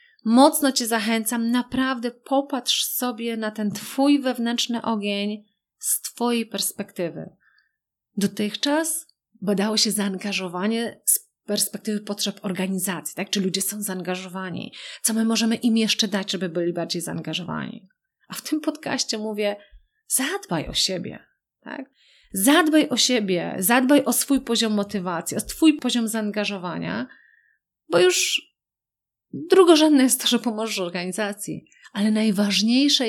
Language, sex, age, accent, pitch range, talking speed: Polish, female, 30-49, native, 195-265 Hz, 125 wpm